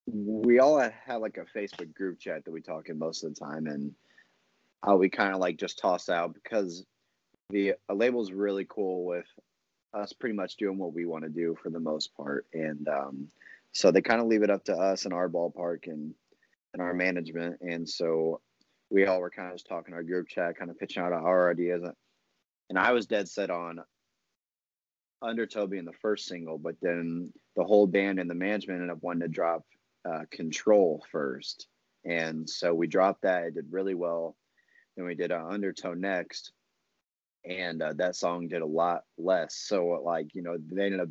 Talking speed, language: 205 wpm, English